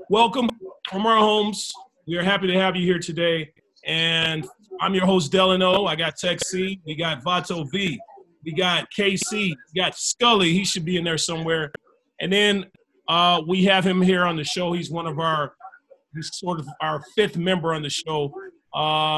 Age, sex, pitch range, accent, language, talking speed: 30-49, male, 155-190 Hz, American, English, 190 wpm